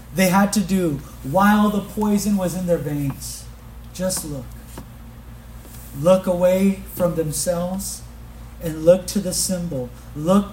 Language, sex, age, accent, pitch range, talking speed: English, male, 40-59, American, 140-200 Hz, 130 wpm